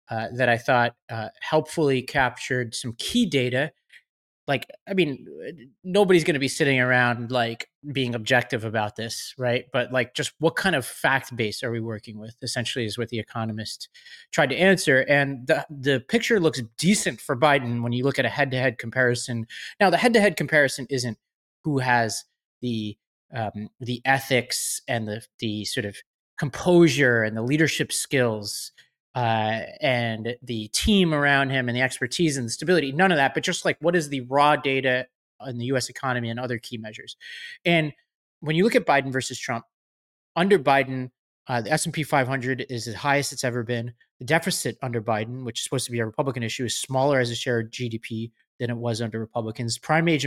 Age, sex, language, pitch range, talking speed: 30-49, male, English, 120-150 Hz, 190 wpm